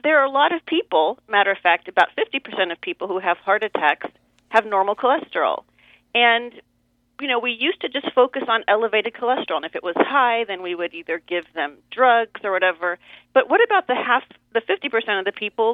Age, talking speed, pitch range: 40-59, 210 wpm, 175-235 Hz